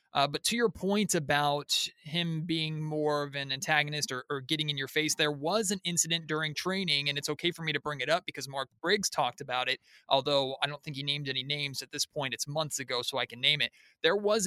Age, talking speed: 30-49, 250 wpm